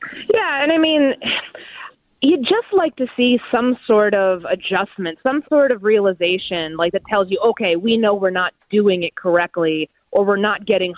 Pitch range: 180-240 Hz